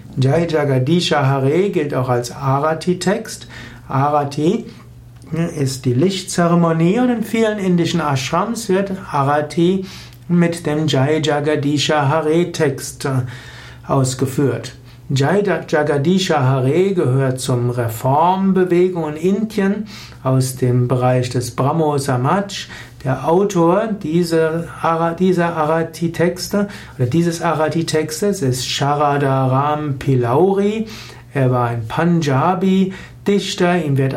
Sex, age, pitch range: male, 60-79, 130-180 Hz